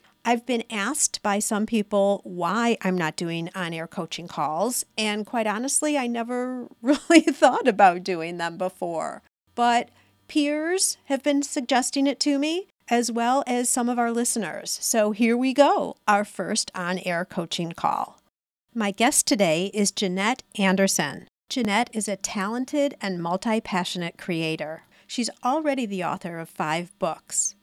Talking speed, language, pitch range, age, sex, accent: 150 wpm, English, 185-255 Hz, 50-69, female, American